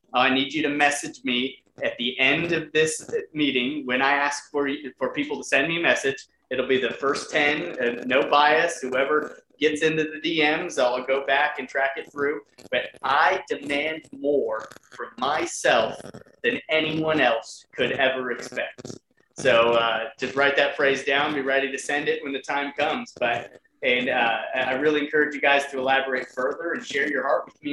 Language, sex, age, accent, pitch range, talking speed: English, male, 30-49, American, 125-150 Hz, 195 wpm